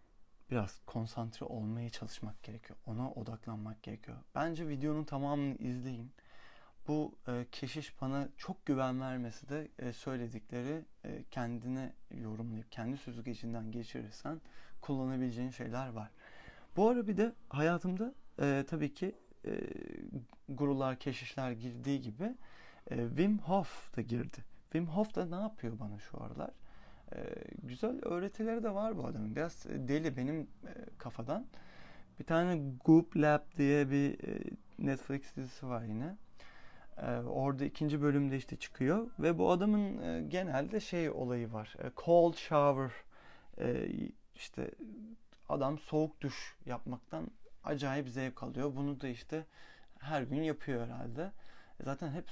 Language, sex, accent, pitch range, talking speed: Turkish, male, native, 120-160 Hz, 125 wpm